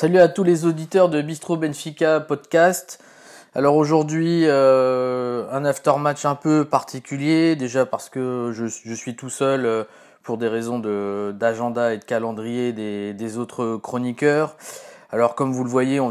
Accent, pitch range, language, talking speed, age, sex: French, 115-140 Hz, French, 155 wpm, 20-39, male